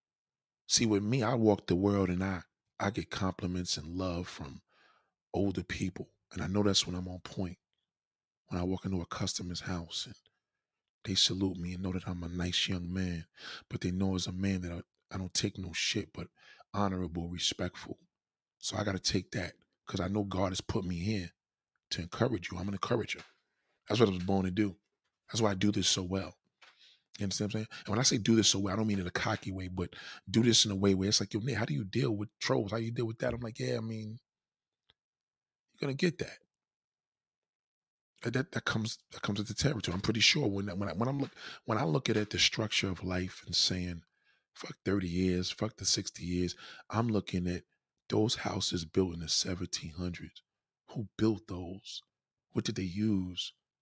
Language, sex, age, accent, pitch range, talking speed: English, male, 20-39, American, 90-110 Hz, 220 wpm